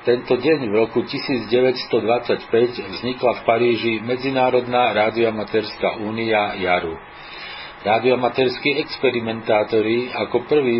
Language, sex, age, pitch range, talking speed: Slovak, male, 50-69, 110-125 Hz, 90 wpm